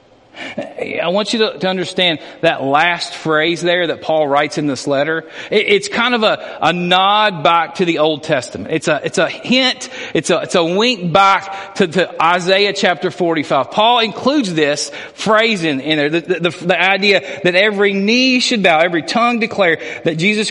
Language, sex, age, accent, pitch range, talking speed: English, male, 40-59, American, 155-210 Hz, 185 wpm